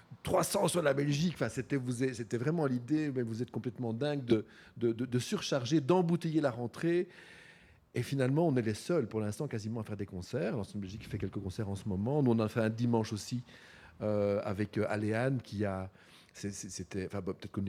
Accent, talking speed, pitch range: French, 215 wpm, 105-140 Hz